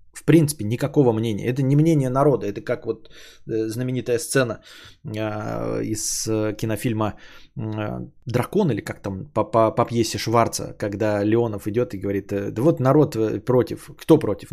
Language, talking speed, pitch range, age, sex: Bulgarian, 135 wpm, 120-180 Hz, 20-39, male